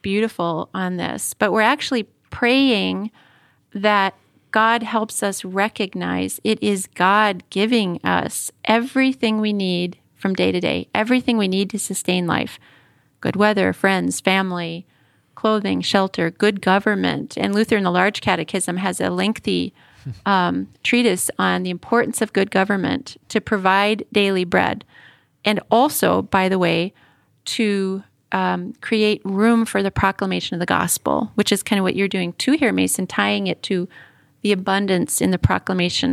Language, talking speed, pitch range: English, 155 wpm, 180-215 Hz